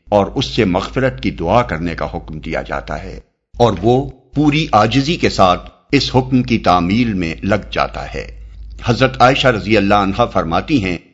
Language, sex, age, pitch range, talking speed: Urdu, male, 50-69, 90-125 Hz, 180 wpm